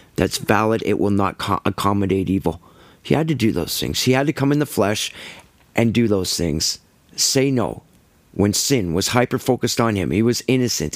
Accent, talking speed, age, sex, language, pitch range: American, 205 wpm, 40-59, male, English, 95-125 Hz